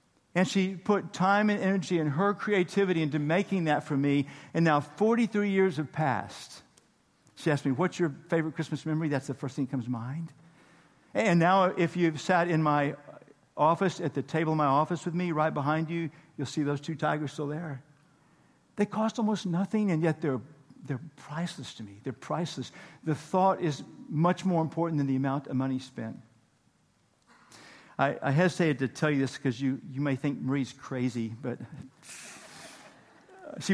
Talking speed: 185 wpm